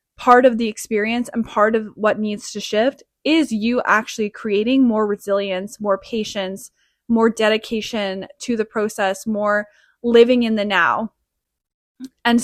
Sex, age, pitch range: female, 20-39, 200-235 Hz